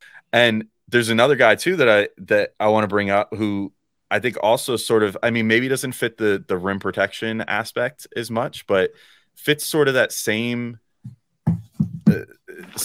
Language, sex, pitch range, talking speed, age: English, male, 95-120 Hz, 180 wpm, 30-49